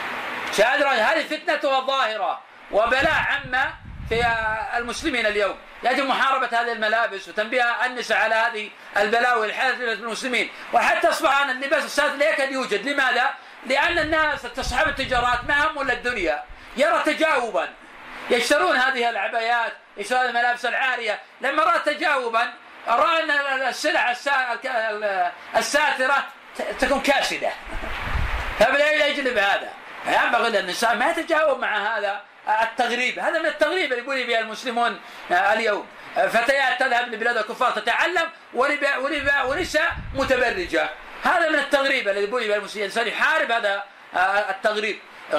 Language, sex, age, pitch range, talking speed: Arabic, male, 40-59, 230-290 Hz, 120 wpm